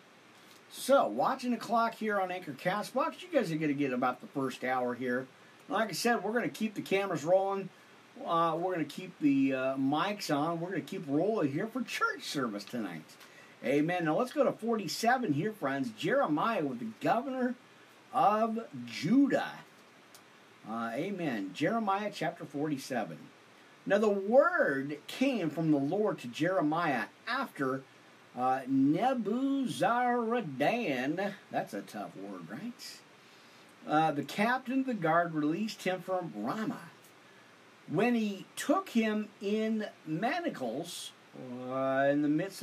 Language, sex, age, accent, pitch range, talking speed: English, male, 50-69, American, 150-230 Hz, 150 wpm